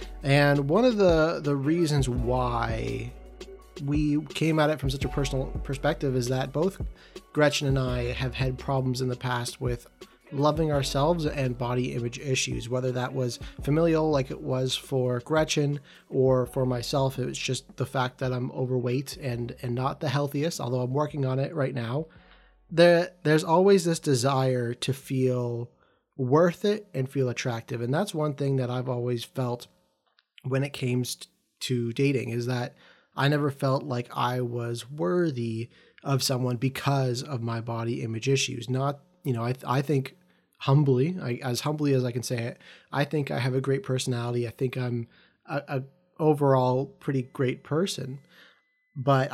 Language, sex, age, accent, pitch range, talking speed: English, male, 30-49, American, 125-145 Hz, 170 wpm